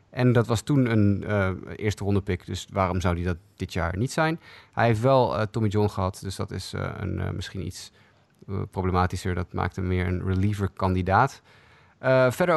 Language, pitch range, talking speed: Dutch, 95-115 Hz, 185 wpm